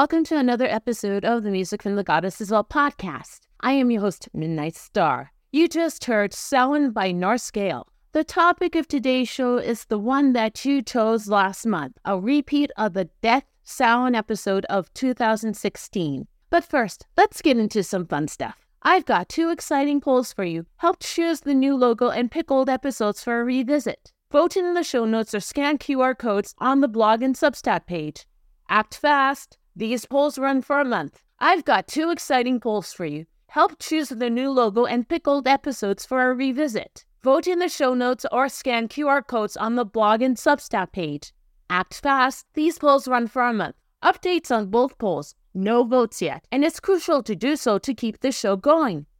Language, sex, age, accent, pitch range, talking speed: English, female, 40-59, American, 215-280 Hz, 195 wpm